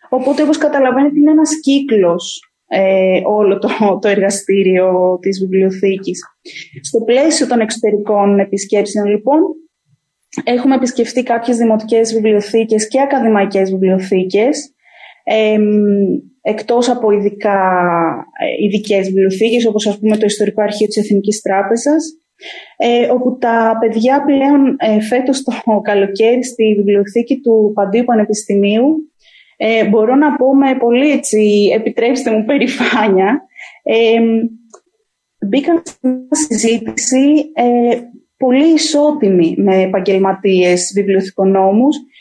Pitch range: 205-265 Hz